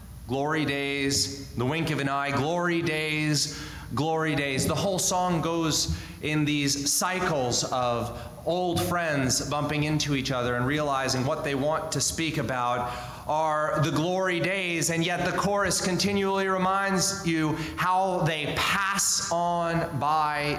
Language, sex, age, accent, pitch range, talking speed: English, male, 30-49, American, 130-165 Hz, 145 wpm